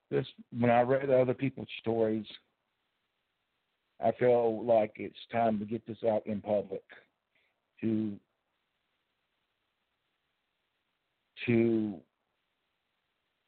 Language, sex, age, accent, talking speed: English, male, 60-79, American, 90 wpm